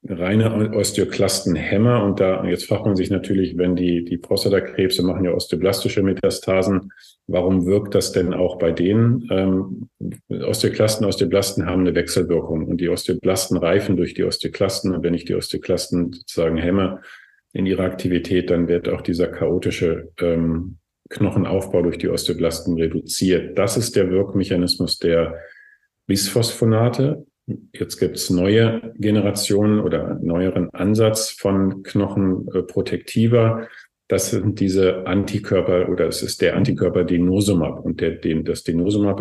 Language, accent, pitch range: German, German, 90-100 Hz